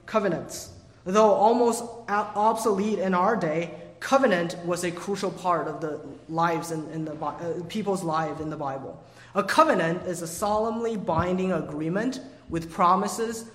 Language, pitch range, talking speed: English, 155-195 Hz, 145 wpm